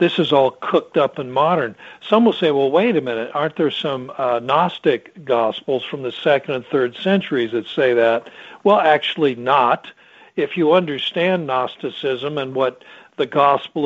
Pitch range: 135-170 Hz